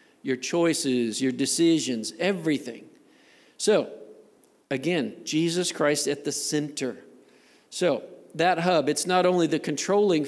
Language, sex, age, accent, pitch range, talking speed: English, male, 50-69, American, 140-170 Hz, 115 wpm